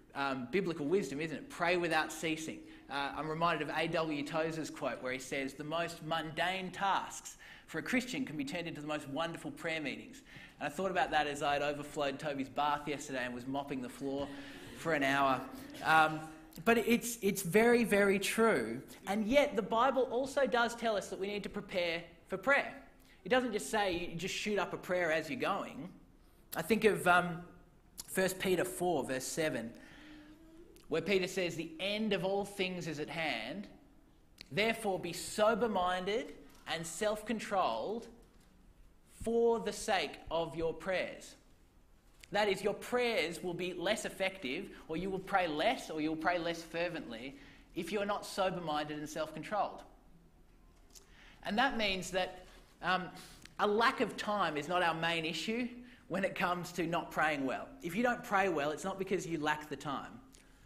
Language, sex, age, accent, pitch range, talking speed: English, male, 20-39, Australian, 155-205 Hz, 175 wpm